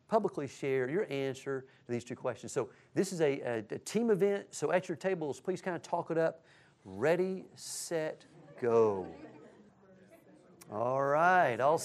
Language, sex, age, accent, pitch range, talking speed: English, male, 40-59, American, 145-200 Hz, 155 wpm